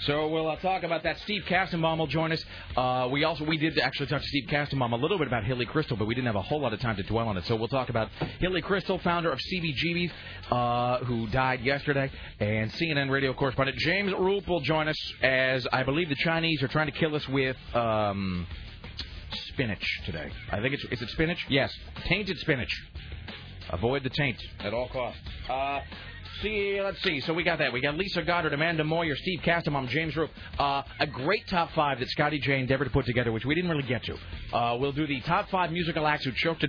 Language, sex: English, male